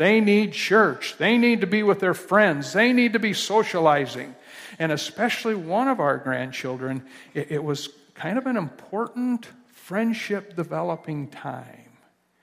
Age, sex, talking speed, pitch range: 60-79, male, 150 wpm, 140-200 Hz